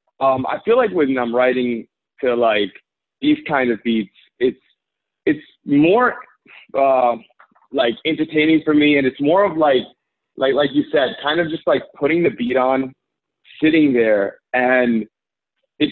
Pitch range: 110-145 Hz